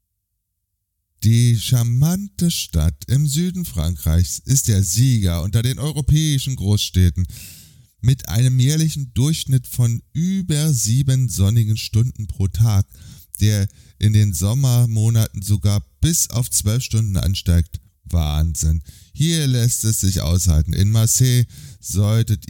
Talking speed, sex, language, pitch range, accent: 115 wpm, male, German, 85-120 Hz, German